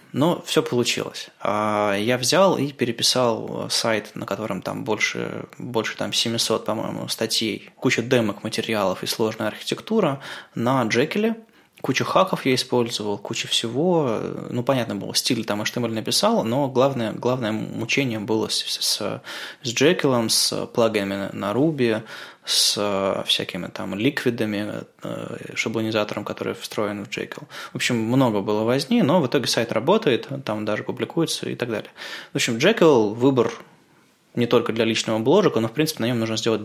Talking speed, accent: 150 wpm, native